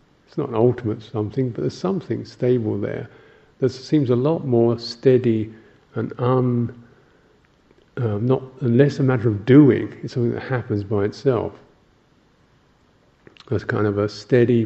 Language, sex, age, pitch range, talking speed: English, male, 50-69, 105-125 Hz, 145 wpm